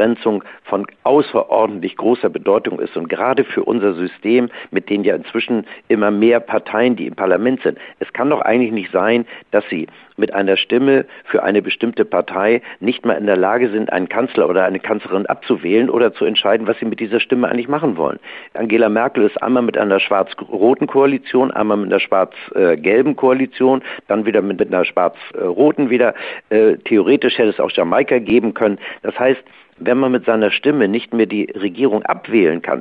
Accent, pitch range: German, 105-130 Hz